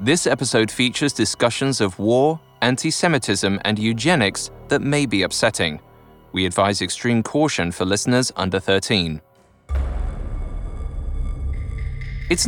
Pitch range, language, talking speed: 95-140 Hz, English, 105 wpm